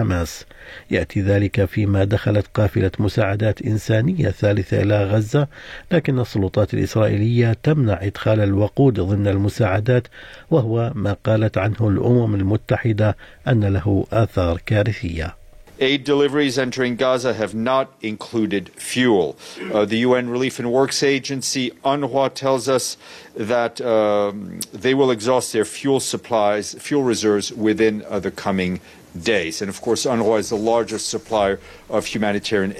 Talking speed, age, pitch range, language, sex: 130 wpm, 50-69, 100-125 Hz, Arabic, male